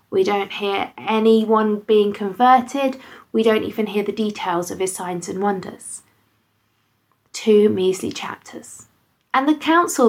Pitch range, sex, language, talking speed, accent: 200-245 Hz, female, English, 135 wpm, British